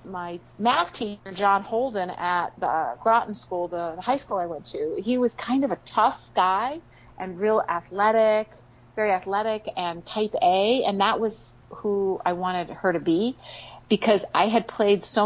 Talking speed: 175 wpm